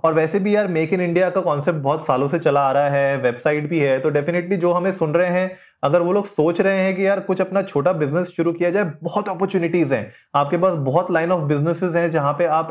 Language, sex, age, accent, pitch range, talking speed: Hindi, male, 30-49, native, 145-180 Hz, 240 wpm